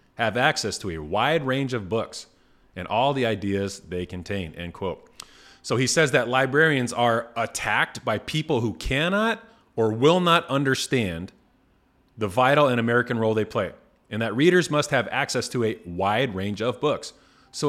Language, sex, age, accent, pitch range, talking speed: English, male, 30-49, American, 115-150 Hz, 175 wpm